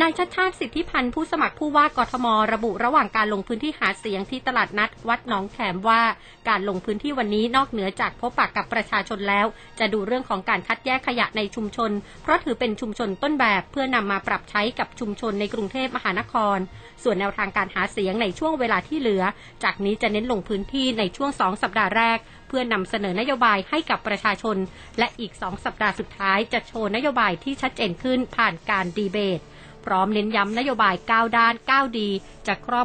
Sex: female